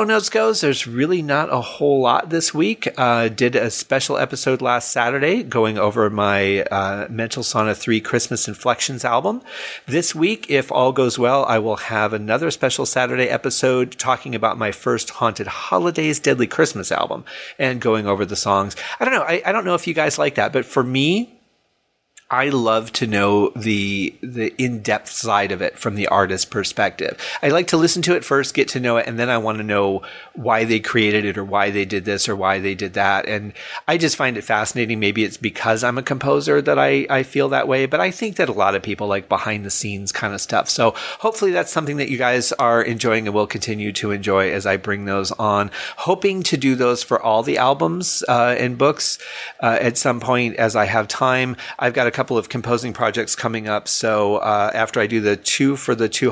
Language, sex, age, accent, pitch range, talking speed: English, male, 40-59, American, 105-130 Hz, 215 wpm